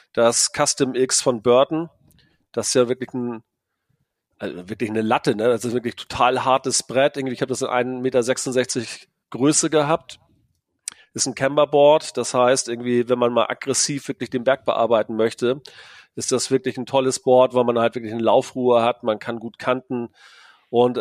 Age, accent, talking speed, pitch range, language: 40-59, German, 185 wpm, 115-135 Hz, German